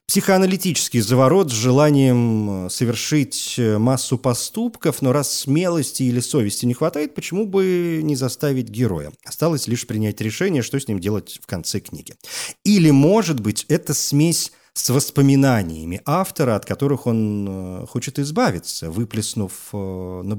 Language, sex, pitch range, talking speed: Russian, male, 105-150 Hz, 130 wpm